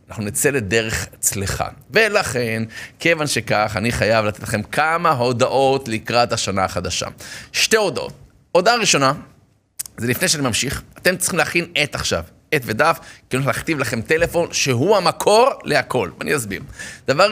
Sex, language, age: male, Hebrew, 30-49